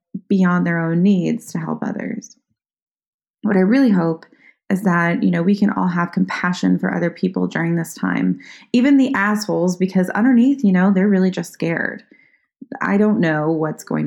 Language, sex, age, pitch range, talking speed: English, female, 20-39, 165-220 Hz, 180 wpm